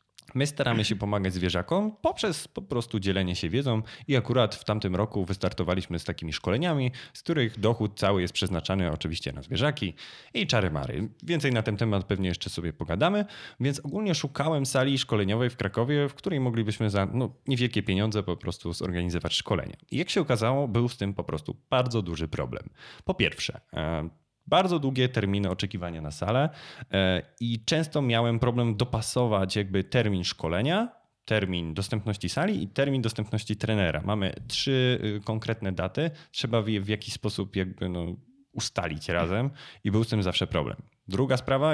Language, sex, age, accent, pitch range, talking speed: Polish, male, 20-39, native, 95-125 Hz, 160 wpm